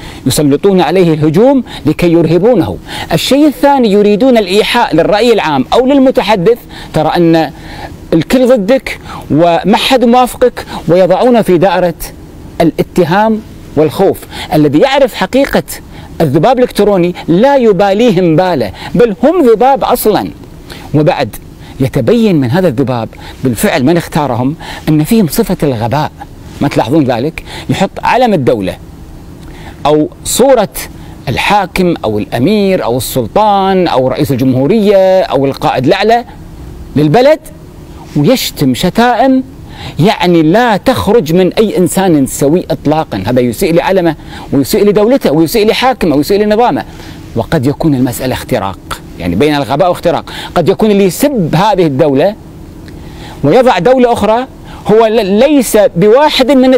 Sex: male